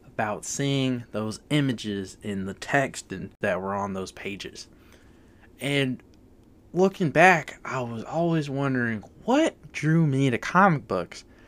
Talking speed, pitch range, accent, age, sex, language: 135 wpm, 115-160 Hz, American, 20-39, male, English